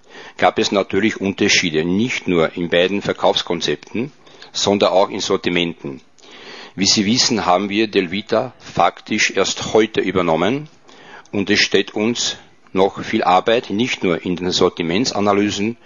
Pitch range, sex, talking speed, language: 95-110 Hz, male, 130 wpm, Czech